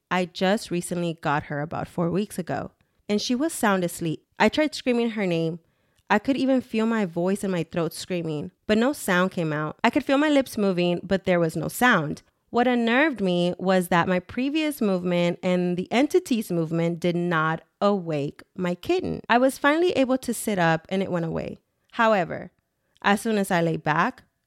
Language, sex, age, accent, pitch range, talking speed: English, female, 20-39, American, 170-210 Hz, 195 wpm